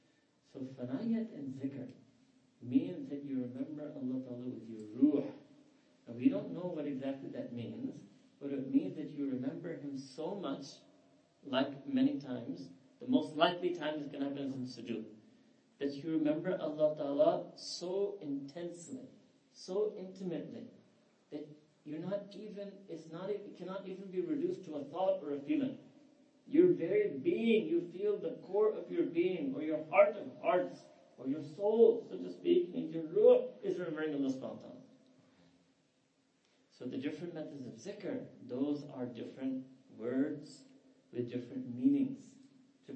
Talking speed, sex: 150 wpm, male